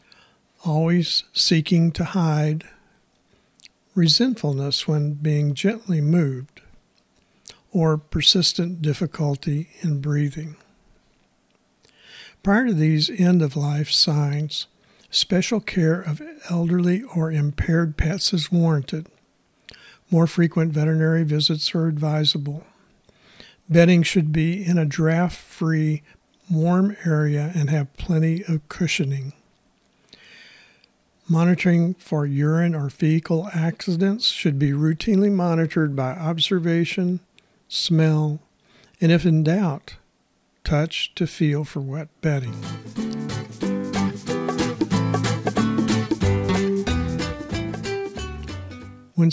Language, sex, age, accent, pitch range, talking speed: English, male, 60-79, American, 150-175 Hz, 85 wpm